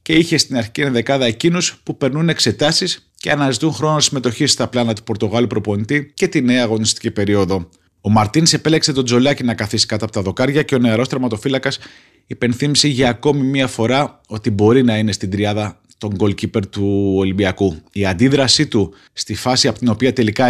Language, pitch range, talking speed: Greek, 110-135 Hz, 180 wpm